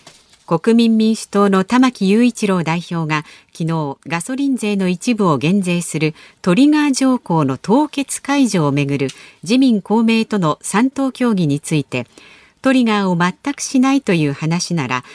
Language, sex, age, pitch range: Japanese, female, 50-69, 160-245 Hz